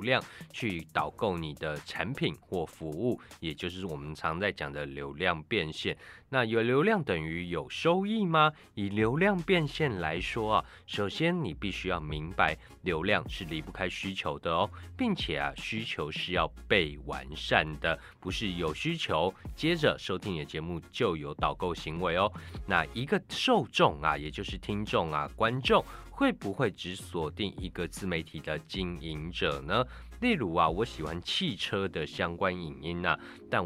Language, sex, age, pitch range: Chinese, male, 20-39, 80-110 Hz